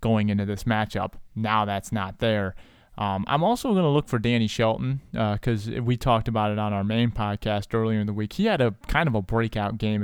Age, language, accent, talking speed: 20-39, English, American, 235 wpm